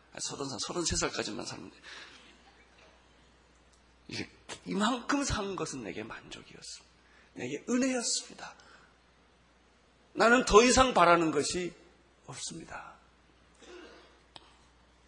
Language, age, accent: Korean, 40-59, native